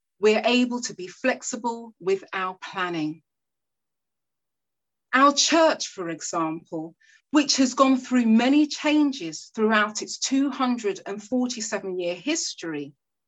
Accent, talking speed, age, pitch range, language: British, 105 wpm, 30-49, 185-260 Hz, English